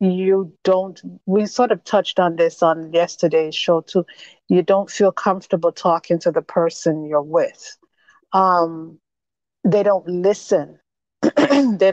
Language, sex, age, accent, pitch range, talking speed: English, female, 50-69, American, 165-205 Hz, 135 wpm